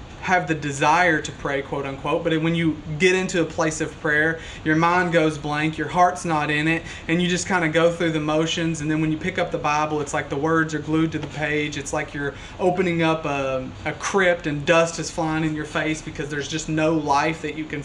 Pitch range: 150-170 Hz